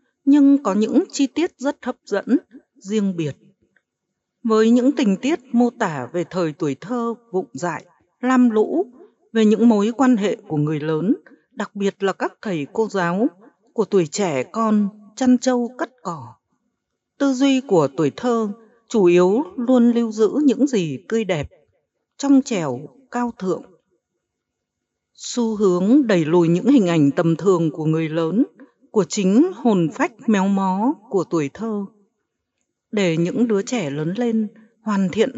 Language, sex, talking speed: Vietnamese, female, 160 wpm